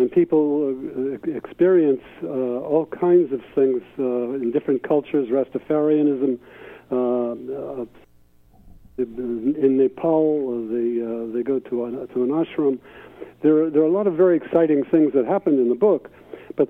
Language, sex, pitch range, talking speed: English, male, 125-155 Hz, 155 wpm